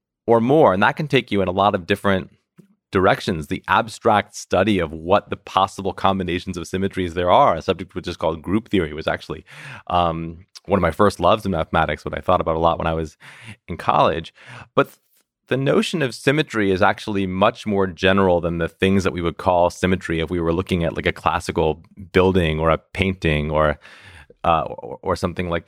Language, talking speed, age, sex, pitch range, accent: English, 210 wpm, 30-49, male, 85-105 Hz, American